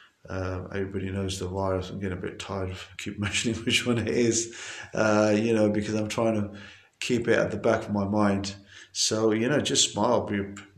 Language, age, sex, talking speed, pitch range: English, 30-49, male, 210 wpm, 100-115 Hz